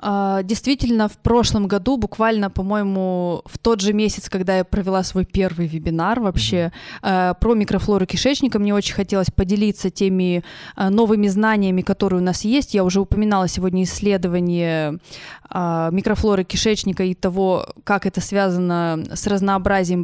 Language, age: Russian, 20-39